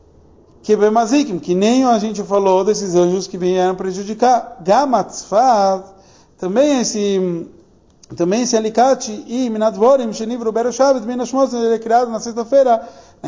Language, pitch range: Portuguese, 185-240 Hz